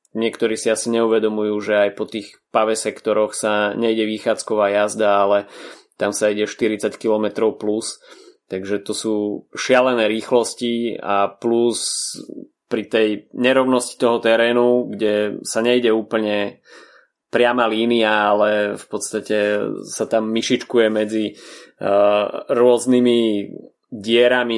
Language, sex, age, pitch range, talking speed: Slovak, male, 20-39, 105-115 Hz, 115 wpm